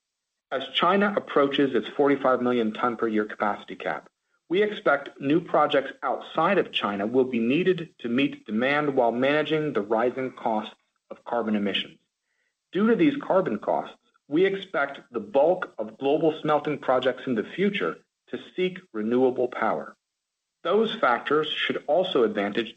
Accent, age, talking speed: American, 40-59, 150 wpm